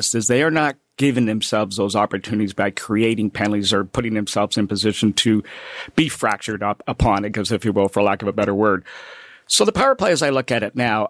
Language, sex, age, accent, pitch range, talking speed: English, male, 50-69, American, 105-135 Hz, 220 wpm